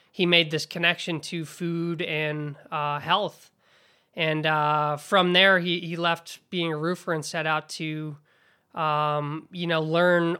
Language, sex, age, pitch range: English, male, 20-39, 155-180 Hz